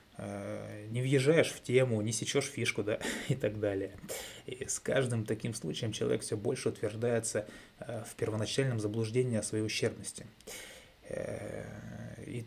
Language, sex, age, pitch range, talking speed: Russian, male, 20-39, 105-135 Hz, 130 wpm